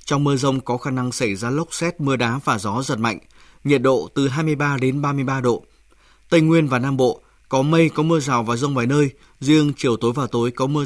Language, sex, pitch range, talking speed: Vietnamese, male, 125-150 Hz, 245 wpm